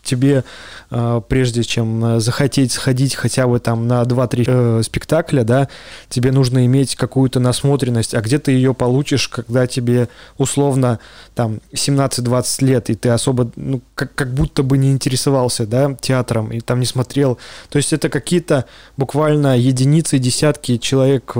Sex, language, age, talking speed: male, Russian, 20-39, 150 wpm